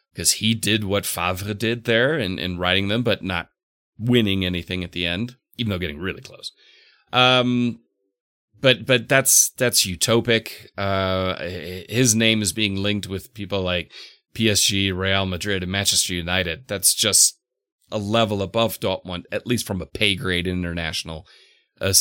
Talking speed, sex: 160 wpm, male